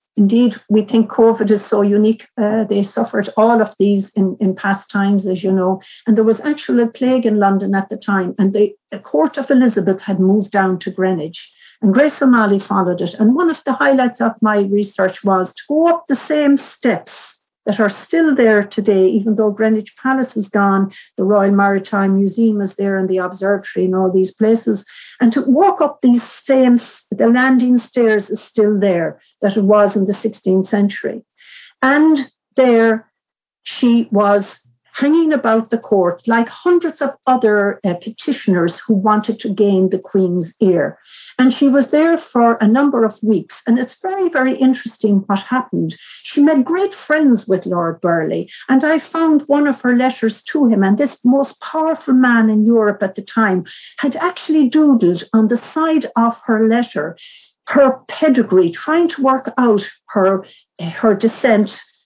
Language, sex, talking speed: English, female, 180 wpm